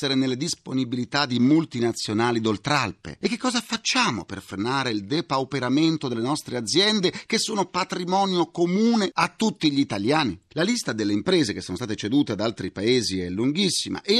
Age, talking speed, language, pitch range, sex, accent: 40-59, 160 wpm, Italian, 110-185 Hz, male, native